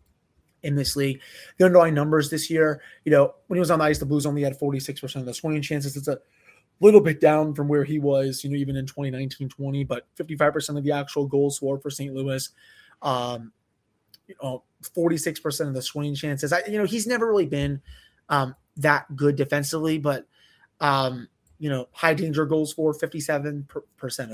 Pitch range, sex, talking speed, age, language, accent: 135-165 Hz, male, 185 wpm, 20-39, English, American